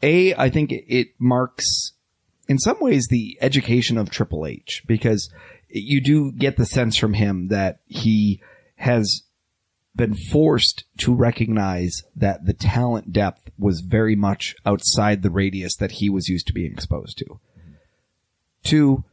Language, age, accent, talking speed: English, 30-49, American, 145 wpm